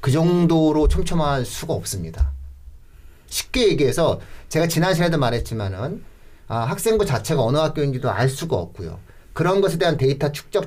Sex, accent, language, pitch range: male, native, Korean, 110-165 Hz